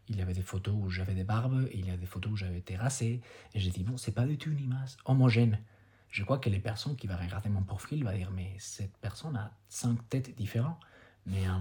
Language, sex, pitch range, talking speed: French, male, 95-120 Hz, 265 wpm